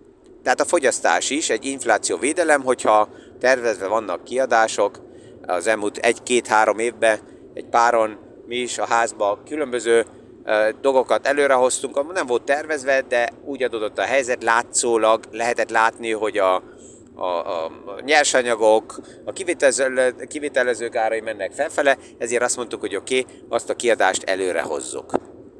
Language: Hungarian